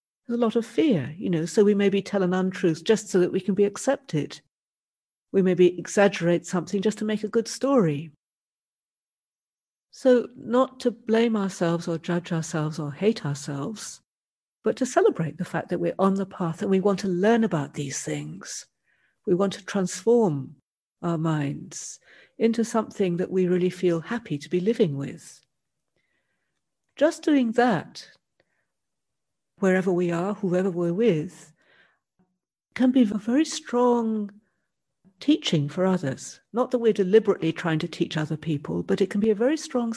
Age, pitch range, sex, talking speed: 50-69, 170-225 Hz, female, 165 wpm